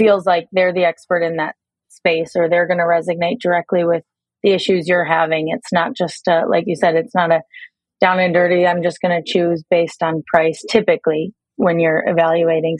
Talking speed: 205 wpm